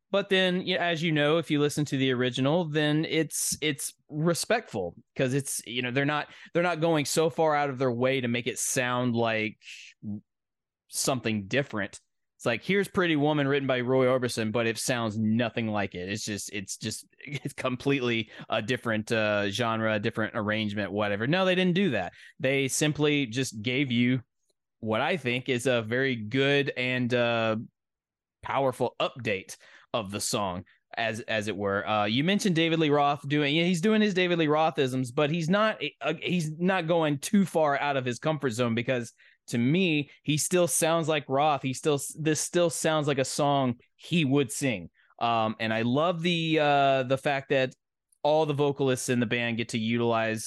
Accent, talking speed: American, 195 wpm